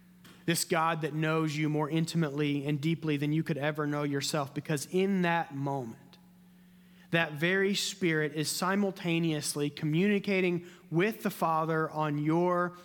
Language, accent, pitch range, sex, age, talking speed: English, American, 145-180 Hz, male, 30-49, 140 wpm